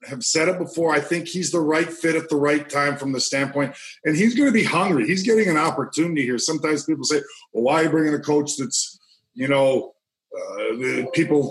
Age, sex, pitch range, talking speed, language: 40-59, male, 140-165 Hz, 225 wpm, English